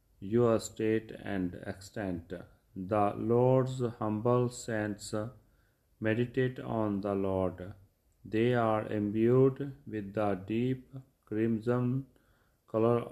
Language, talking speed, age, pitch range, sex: Punjabi, 90 wpm, 40-59, 100-125 Hz, male